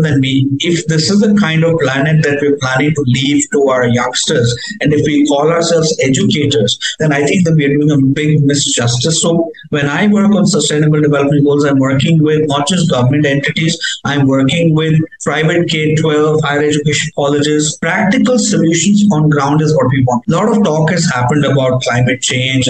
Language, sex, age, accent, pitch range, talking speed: English, male, 50-69, Indian, 140-170 Hz, 190 wpm